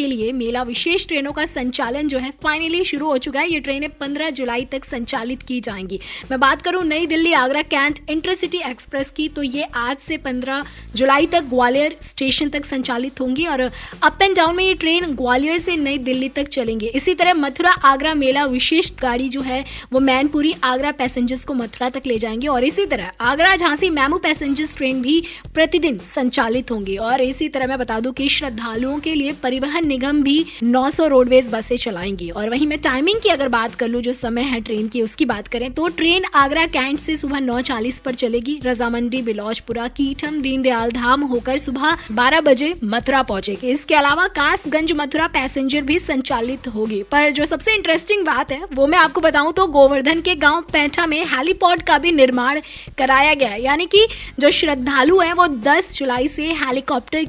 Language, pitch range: Hindi, 255-315 Hz